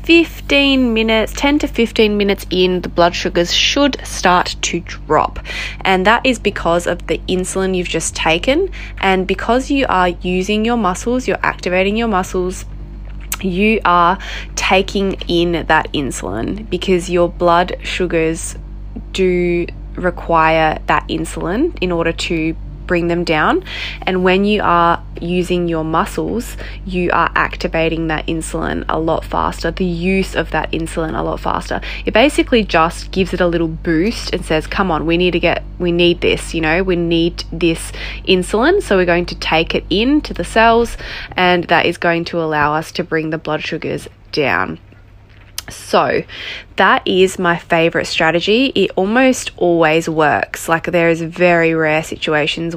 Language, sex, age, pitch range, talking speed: English, female, 20-39, 165-195 Hz, 160 wpm